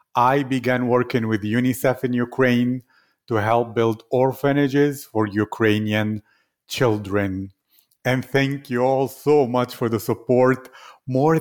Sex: male